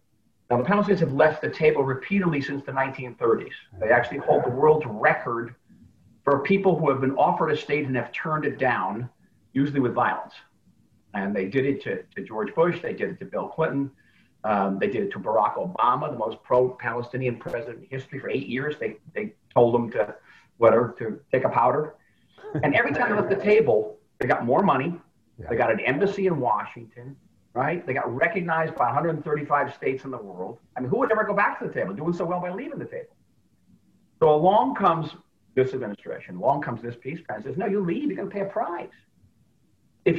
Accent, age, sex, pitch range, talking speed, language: American, 50-69, male, 120-175 Hz, 205 wpm, English